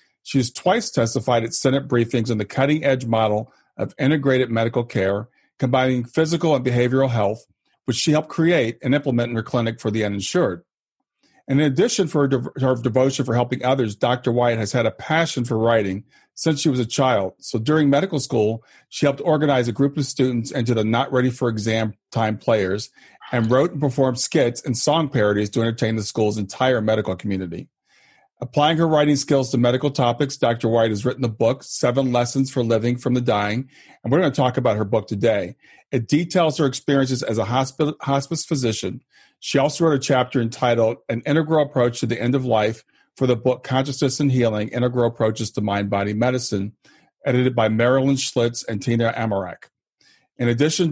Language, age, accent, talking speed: English, 40-59, American, 185 wpm